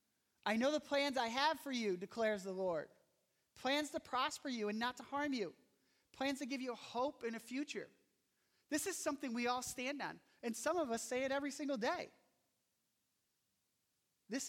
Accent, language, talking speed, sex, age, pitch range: American, English, 185 wpm, male, 30-49, 175-235 Hz